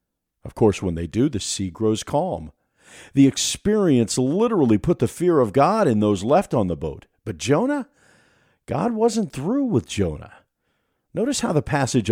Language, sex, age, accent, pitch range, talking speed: English, male, 50-69, American, 100-155 Hz, 170 wpm